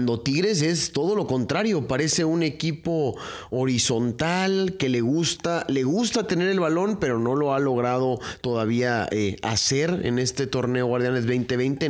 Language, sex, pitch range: Spanish, male, 120-155 Hz